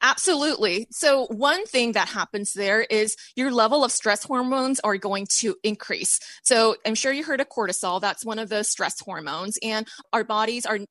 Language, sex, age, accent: English, female, 20-39, American